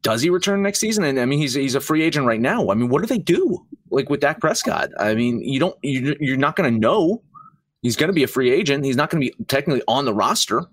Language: English